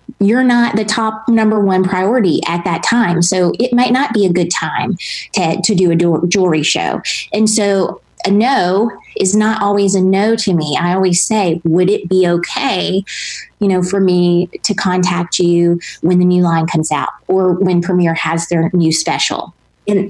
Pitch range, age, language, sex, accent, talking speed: 175-205 Hz, 30-49, English, female, American, 190 wpm